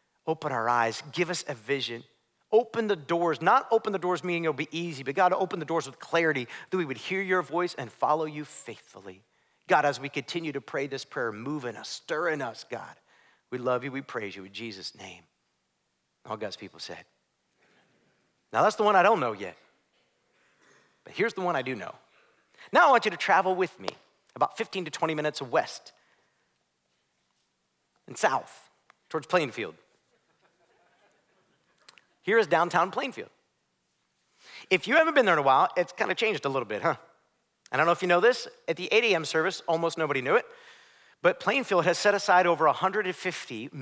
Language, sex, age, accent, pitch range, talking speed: English, male, 40-59, American, 140-190 Hz, 190 wpm